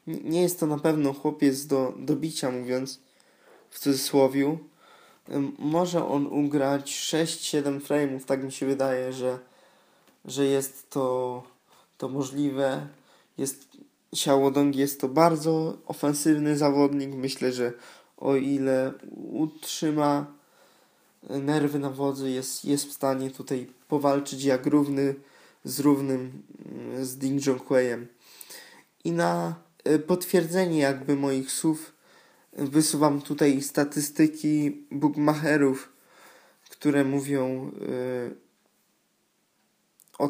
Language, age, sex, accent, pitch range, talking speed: Polish, 20-39, male, native, 130-145 Hz, 100 wpm